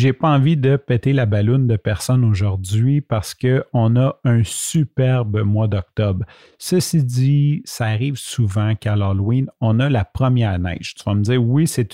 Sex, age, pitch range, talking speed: male, 40-59, 105-135 Hz, 175 wpm